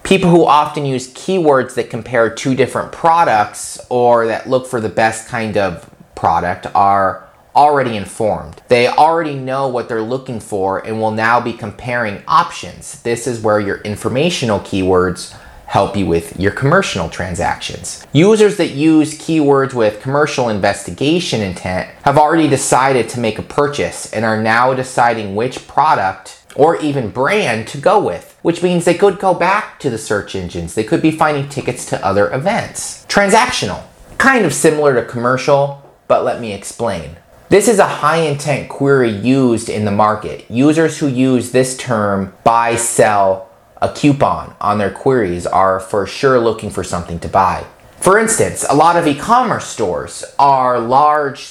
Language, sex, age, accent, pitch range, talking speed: English, male, 30-49, American, 105-145 Hz, 165 wpm